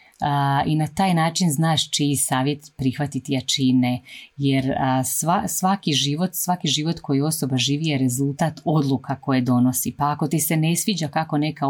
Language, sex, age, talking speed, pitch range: Croatian, female, 30-49, 165 wpm, 135-160 Hz